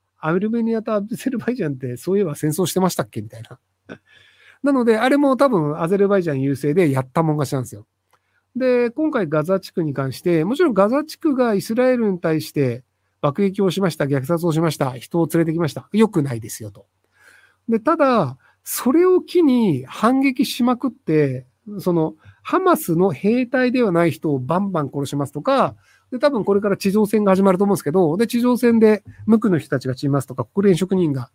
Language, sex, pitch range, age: Japanese, male, 140-225 Hz, 50-69